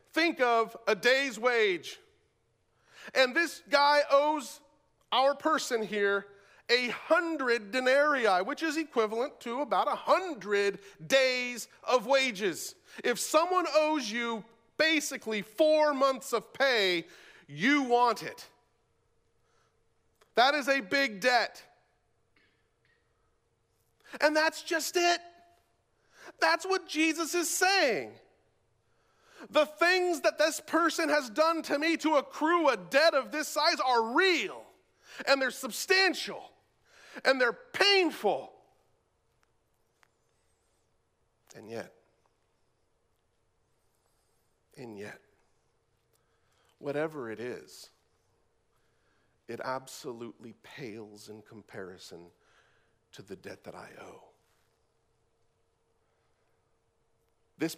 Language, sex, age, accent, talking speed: English, male, 40-59, American, 100 wpm